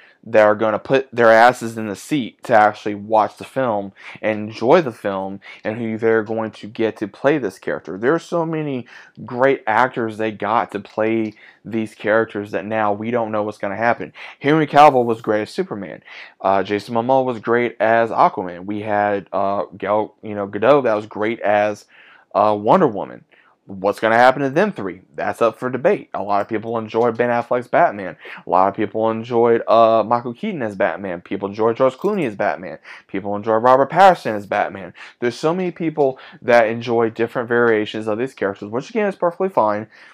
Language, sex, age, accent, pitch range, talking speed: English, male, 20-39, American, 105-125 Hz, 200 wpm